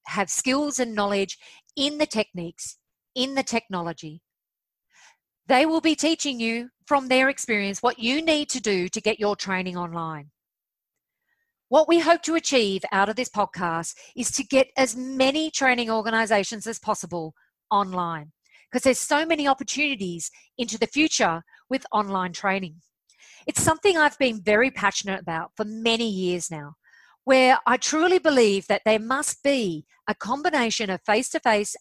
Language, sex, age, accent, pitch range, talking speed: English, female, 40-59, Australian, 195-265 Hz, 155 wpm